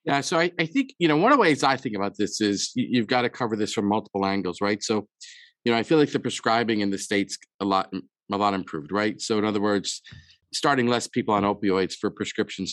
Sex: male